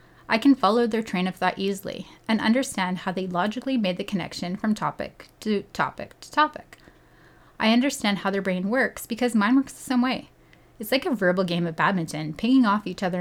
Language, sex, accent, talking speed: English, female, American, 205 wpm